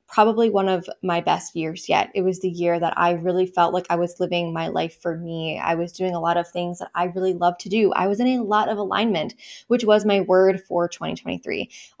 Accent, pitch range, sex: American, 175-200 Hz, female